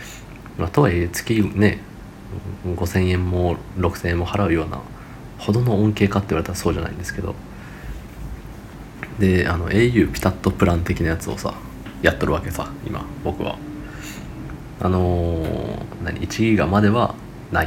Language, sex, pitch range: Japanese, male, 90-105 Hz